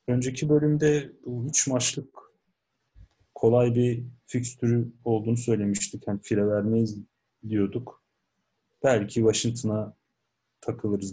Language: Turkish